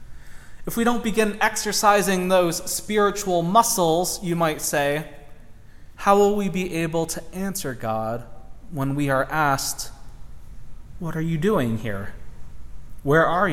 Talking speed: 135 wpm